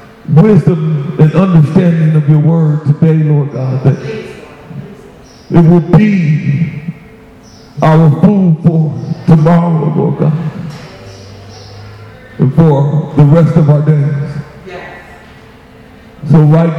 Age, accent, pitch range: 50-69, American, 145-165 Hz